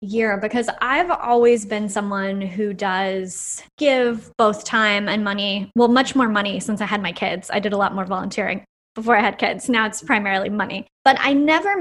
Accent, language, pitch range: American, English, 200-240 Hz